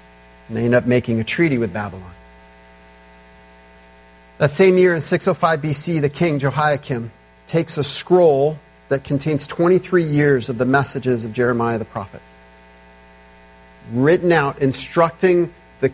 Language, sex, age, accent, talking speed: English, male, 40-59, American, 135 wpm